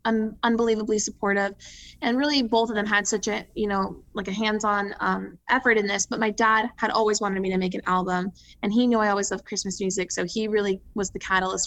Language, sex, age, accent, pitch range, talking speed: English, female, 20-39, American, 205-250 Hz, 230 wpm